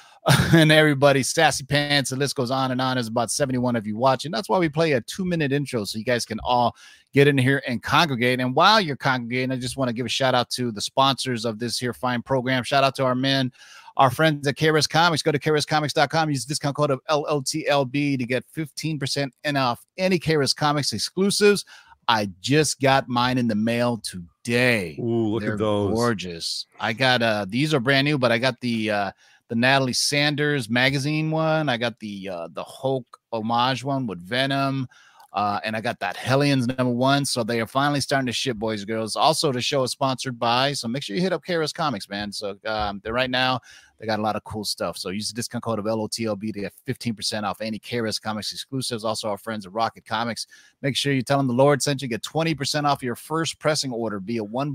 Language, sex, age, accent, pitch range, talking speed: English, male, 30-49, American, 115-145 Hz, 225 wpm